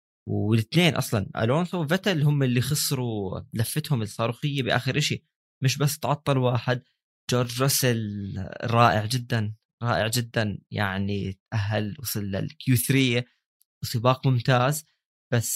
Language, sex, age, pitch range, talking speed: Arabic, male, 20-39, 110-135 Hz, 110 wpm